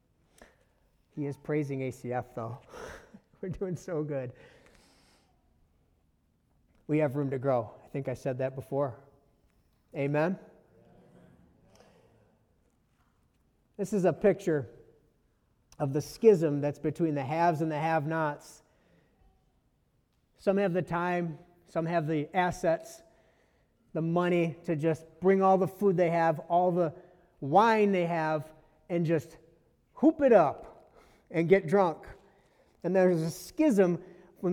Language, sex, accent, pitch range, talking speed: English, male, American, 145-190 Hz, 125 wpm